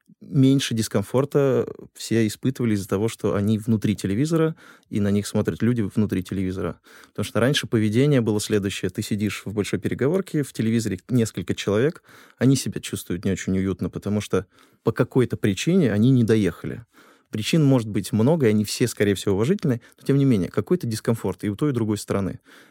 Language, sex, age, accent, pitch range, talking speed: Russian, male, 20-39, native, 105-130 Hz, 180 wpm